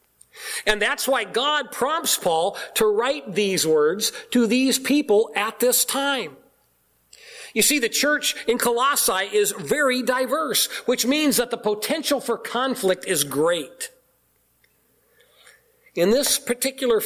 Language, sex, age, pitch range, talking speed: English, male, 50-69, 180-280 Hz, 130 wpm